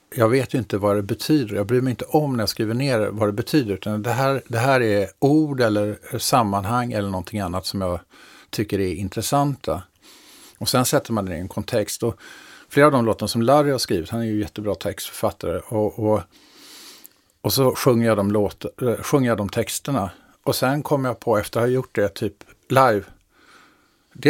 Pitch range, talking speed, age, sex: 105-125 Hz, 200 wpm, 50-69, male